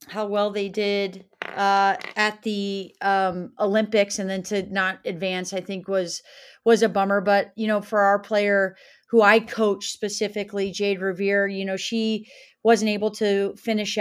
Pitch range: 185-210 Hz